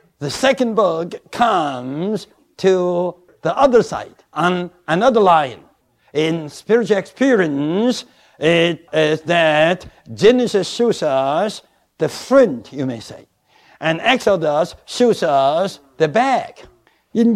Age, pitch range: 60-79, 160-225 Hz